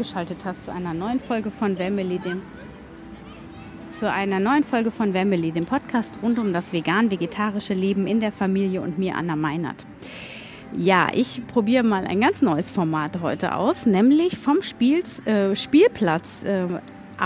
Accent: German